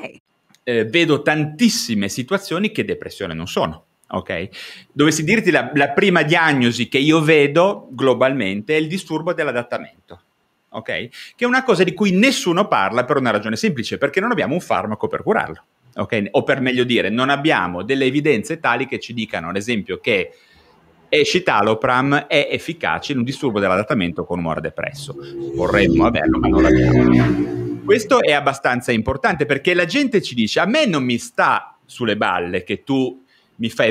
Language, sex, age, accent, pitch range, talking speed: Italian, male, 30-49, native, 100-165 Hz, 165 wpm